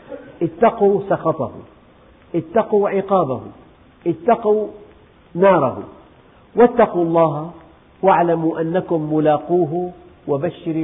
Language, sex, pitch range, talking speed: Arabic, male, 140-185 Hz, 65 wpm